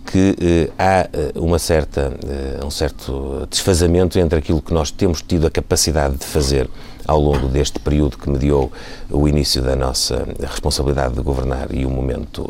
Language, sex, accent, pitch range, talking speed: Portuguese, male, Portuguese, 75-90 Hz, 155 wpm